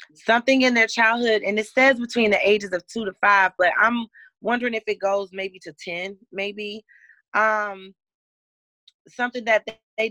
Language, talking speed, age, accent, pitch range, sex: English, 165 wpm, 30-49, American, 175-220 Hz, female